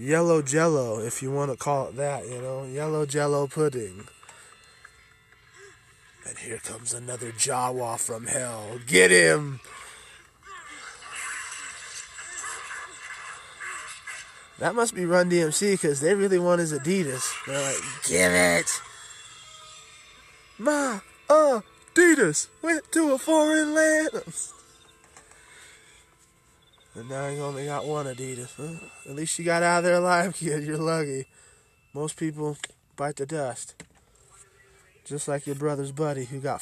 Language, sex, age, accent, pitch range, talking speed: English, male, 20-39, American, 130-170 Hz, 125 wpm